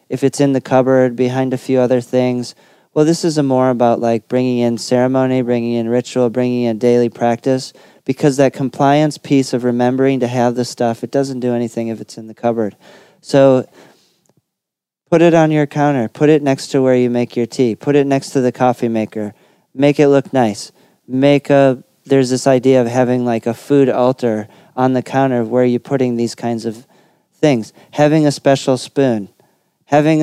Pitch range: 115-135 Hz